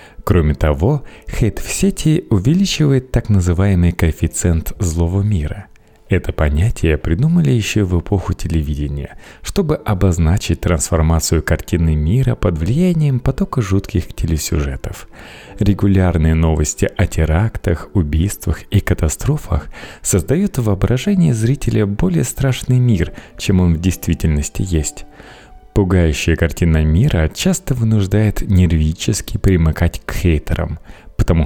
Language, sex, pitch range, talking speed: Russian, male, 80-115 Hz, 105 wpm